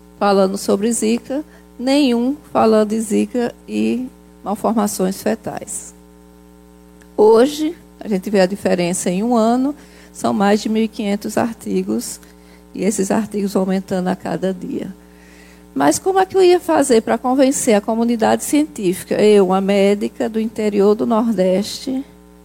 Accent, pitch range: Brazilian, 175-225 Hz